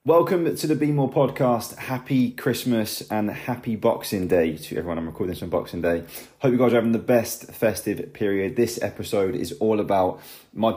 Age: 20-39